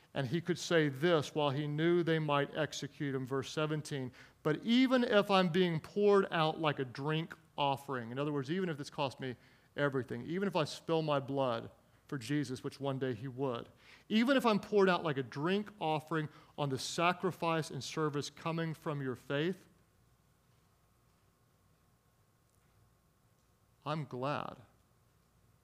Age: 40-59